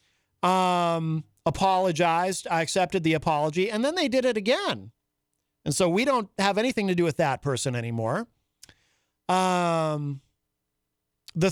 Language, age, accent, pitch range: English, 40-59, American, 135-215 Hz